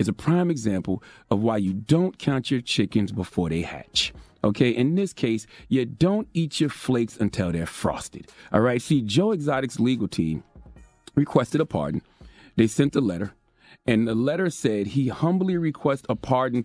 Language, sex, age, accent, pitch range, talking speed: English, male, 40-59, American, 115-180 Hz, 175 wpm